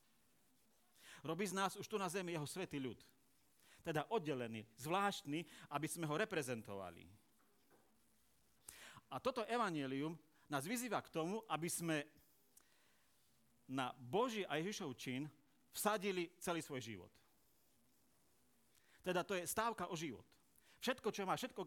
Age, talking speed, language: 40-59, 125 wpm, Slovak